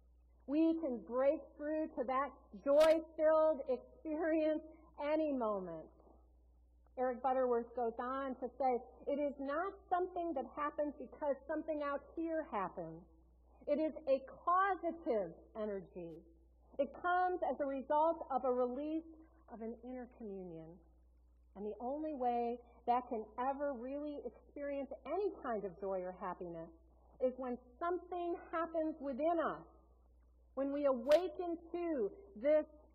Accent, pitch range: American, 225-315 Hz